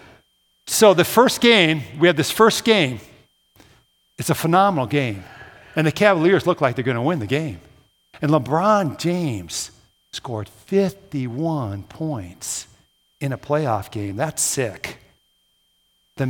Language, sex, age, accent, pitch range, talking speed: English, male, 50-69, American, 130-175 Hz, 135 wpm